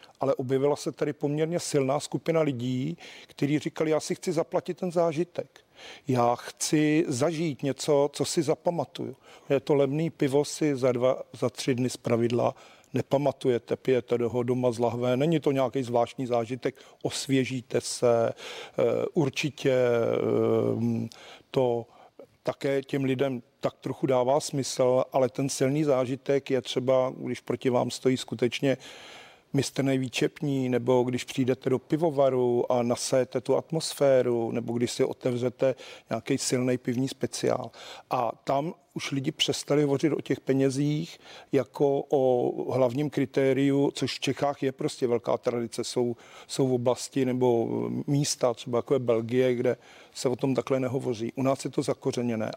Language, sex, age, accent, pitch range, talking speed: Czech, male, 40-59, native, 125-145 Hz, 145 wpm